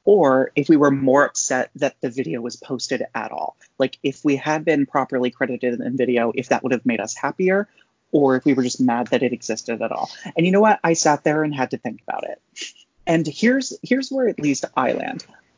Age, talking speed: 30-49, 235 wpm